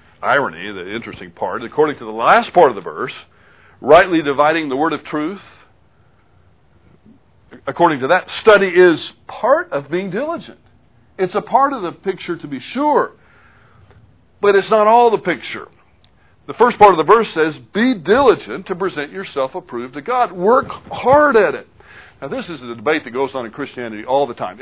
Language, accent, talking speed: English, American, 180 wpm